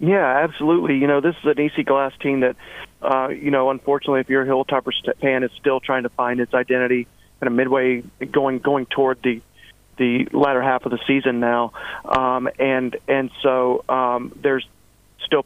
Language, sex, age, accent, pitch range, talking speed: English, male, 40-59, American, 125-140 Hz, 185 wpm